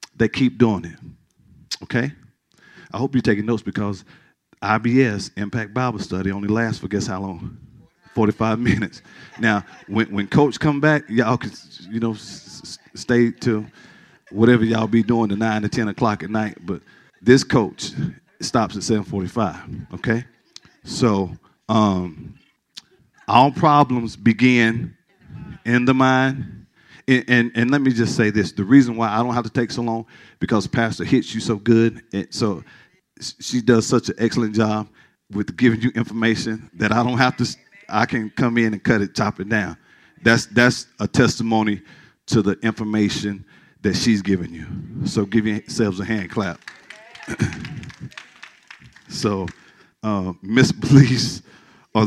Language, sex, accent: English, male, American